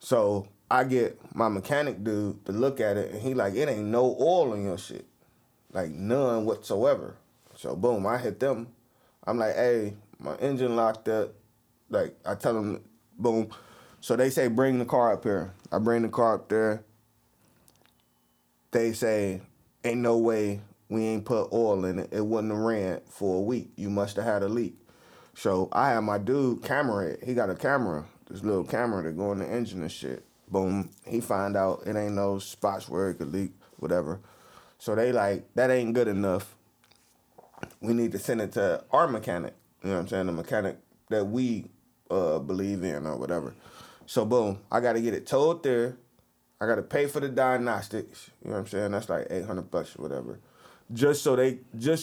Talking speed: 195 wpm